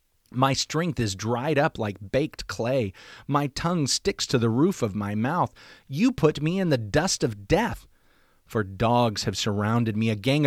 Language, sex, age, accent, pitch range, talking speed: English, male, 30-49, American, 115-160 Hz, 185 wpm